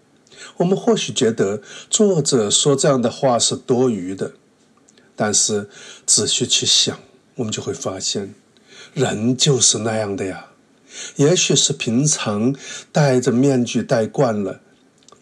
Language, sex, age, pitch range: Chinese, male, 50-69, 110-145 Hz